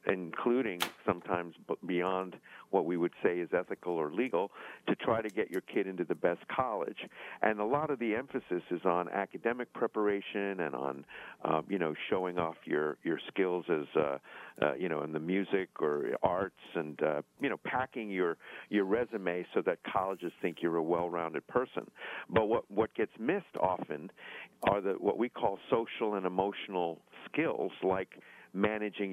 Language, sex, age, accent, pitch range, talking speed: English, male, 50-69, American, 85-105 Hz, 175 wpm